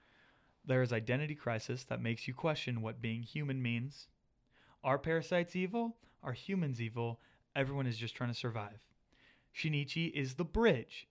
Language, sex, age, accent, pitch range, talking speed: English, male, 20-39, American, 120-140 Hz, 150 wpm